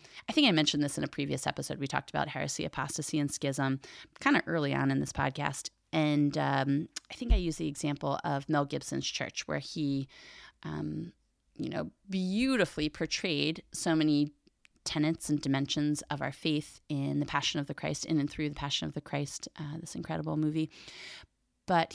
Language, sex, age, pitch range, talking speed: English, female, 30-49, 135-160 Hz, 190 wpm